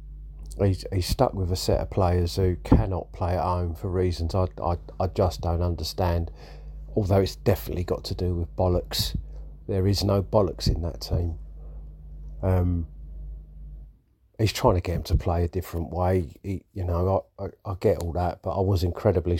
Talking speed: 185 wpm